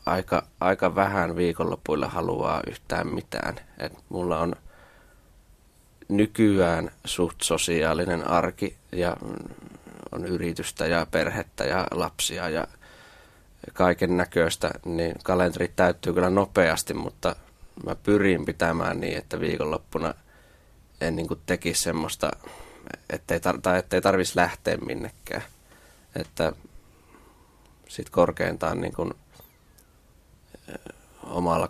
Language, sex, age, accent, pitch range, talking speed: Finnish, male, 20-39, native, 85-90 Hz, 95 wpm